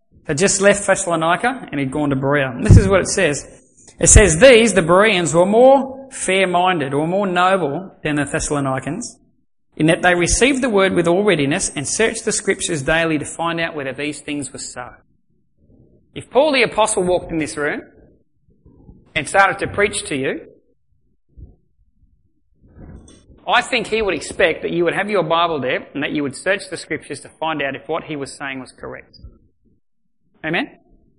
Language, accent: English, Australian